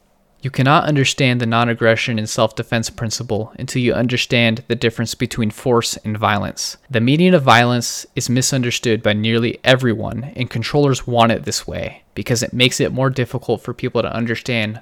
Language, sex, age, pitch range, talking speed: English, male, 20-39, 110-130 Hz, 170 wpm